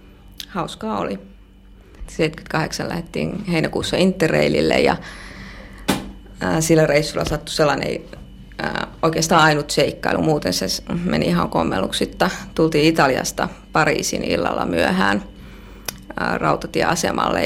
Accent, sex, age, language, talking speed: native, female, 30-49, Finnish, 85 wpm